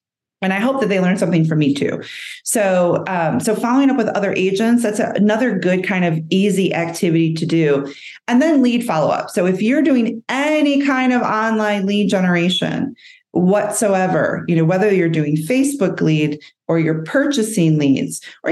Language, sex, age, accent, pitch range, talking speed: English, female, 30-49, American, 165-225 Hz, 180 wpm